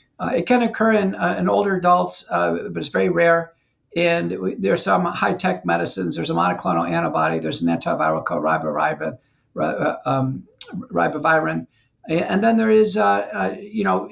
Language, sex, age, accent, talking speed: English, male, 50-69, American, 155 wpm